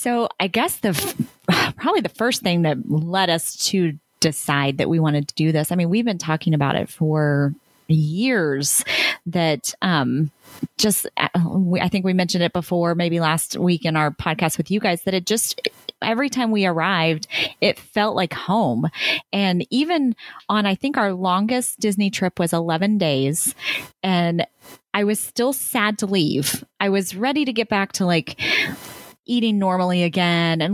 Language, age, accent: English, 30-49, American